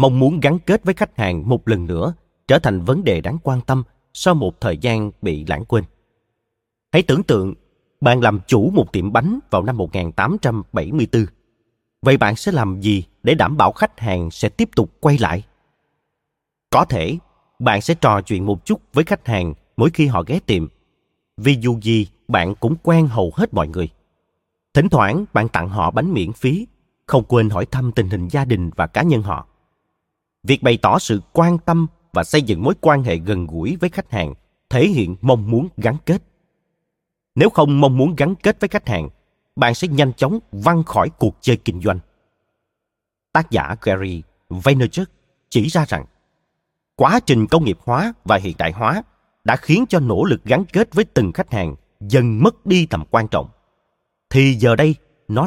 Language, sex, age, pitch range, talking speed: Vietnamese, male, 30-49, 105-160 Hz, 190 wpm